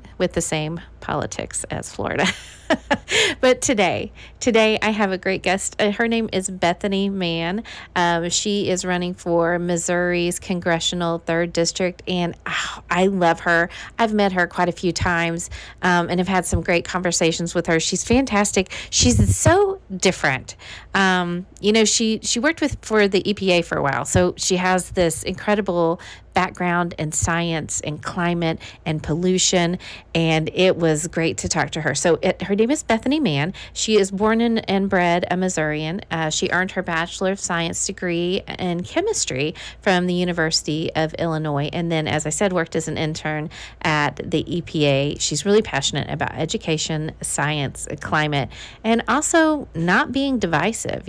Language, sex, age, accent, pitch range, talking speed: English, female, 40-59, American, 160-195 Hz, 165 wpm